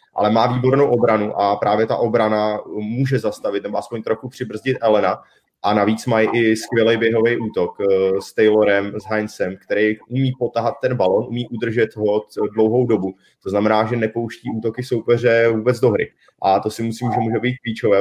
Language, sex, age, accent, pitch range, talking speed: Czech, male, 30-49, native, 105-115 Hz, 175 wpm